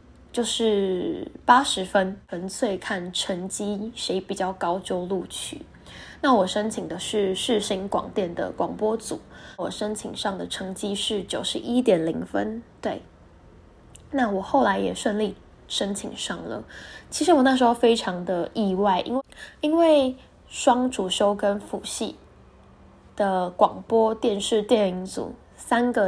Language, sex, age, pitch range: Chinese, female, 10-29, 190-230 Hz